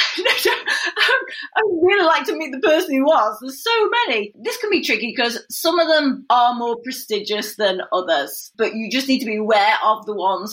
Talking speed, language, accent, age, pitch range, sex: 205 wpm, English, British, 30-49, 215-320 Hz, female